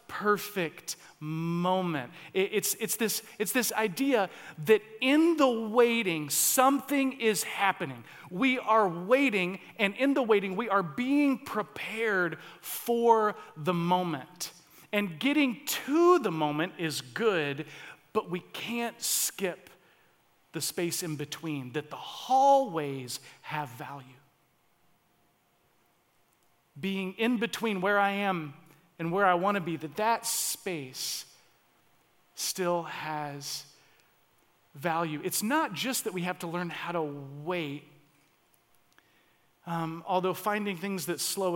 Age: 40-59